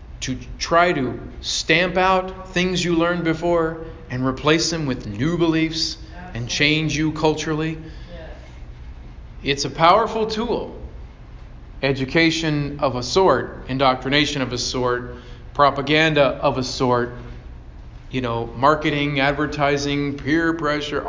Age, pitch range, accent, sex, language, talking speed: 40-59, 120-165 Hz, American, male, English, 115 wpm